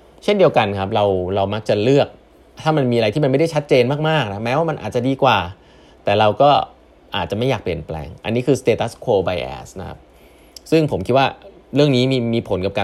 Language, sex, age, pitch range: Thai, male, 20-39, 95-130 Hz